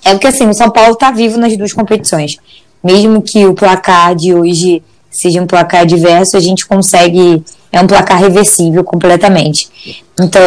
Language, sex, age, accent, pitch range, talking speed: Portuguese, female, 20-39, Brazilian, 175-205 Hz, 170 wpm